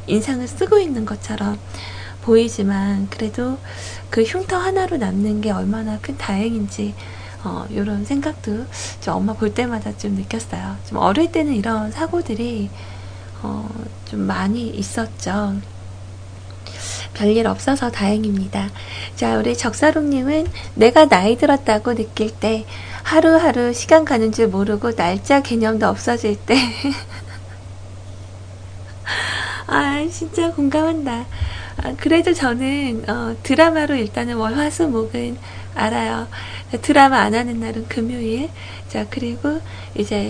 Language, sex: Korean, female